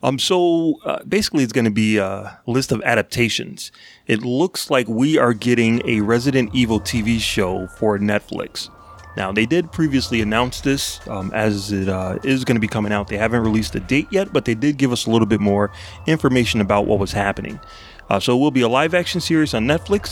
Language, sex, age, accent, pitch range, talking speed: English, male, 30-49, American, 110-140 Hz, 215 wpm